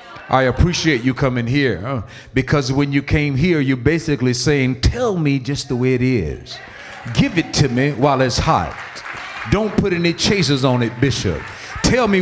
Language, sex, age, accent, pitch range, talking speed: English, male, 50-69, American, 115-155 Hz, 180 wpm